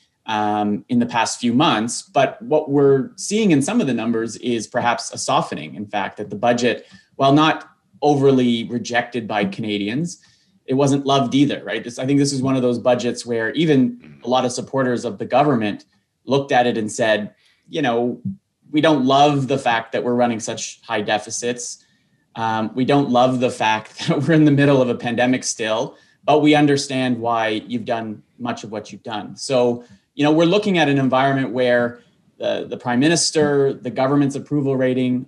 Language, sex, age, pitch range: English, male, 30-49, 110-140 Hz